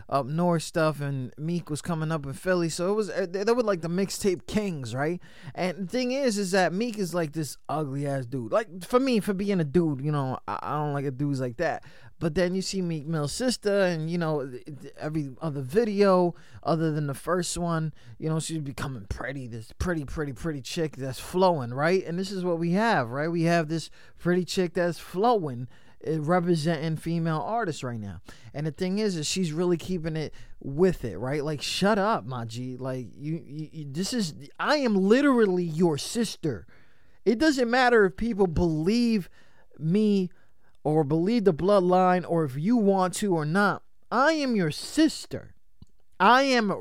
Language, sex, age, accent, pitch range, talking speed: English, male, 20-39, American, 150-200 Hz, 190 wpm